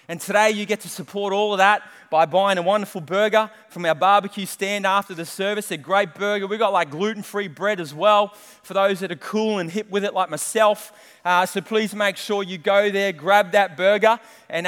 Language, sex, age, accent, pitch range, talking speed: English, male, 20-39, Australian, 160-200 Hz, 220 wpm